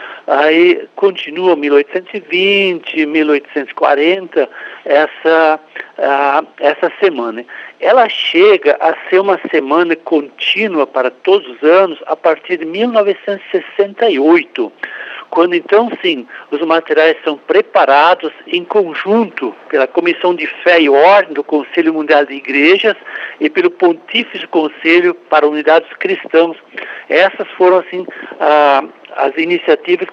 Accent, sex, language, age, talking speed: Brazilian, male, Portuguese, 60-79, 110 wpm